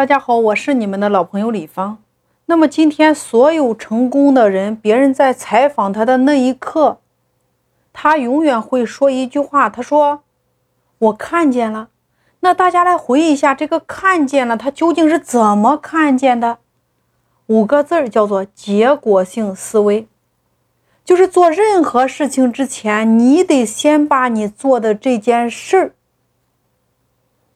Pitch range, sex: 225-315 Hz, female